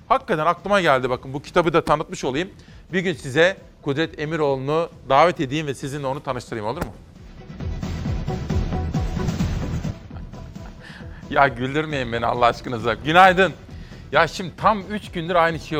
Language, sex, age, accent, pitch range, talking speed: Turkish, male, 40-59, native, 140-195 Hz, 135 wpm